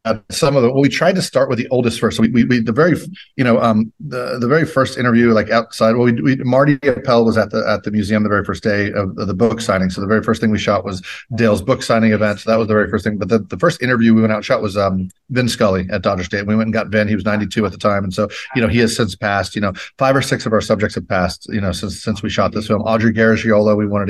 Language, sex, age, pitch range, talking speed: English, male, 40-59, 105-120 Hz, 315 wpm